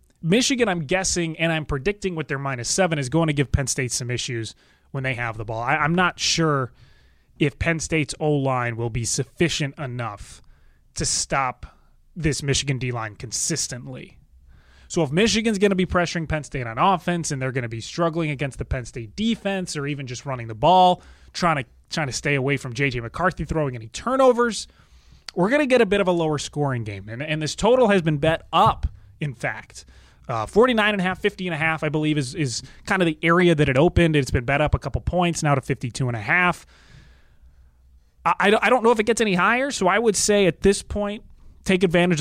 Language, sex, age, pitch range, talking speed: English, male, 20-39, 125-180 Hz, 210 wpm